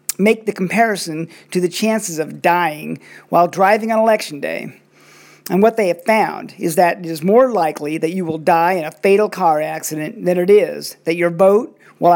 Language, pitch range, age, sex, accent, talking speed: English, 160-195 Hz, 50-69, male, American, 195 wpm